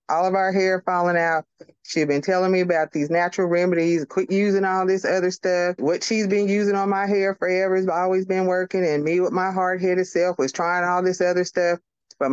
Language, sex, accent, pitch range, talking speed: English, female, American, 160-200 Hz, 225 wpm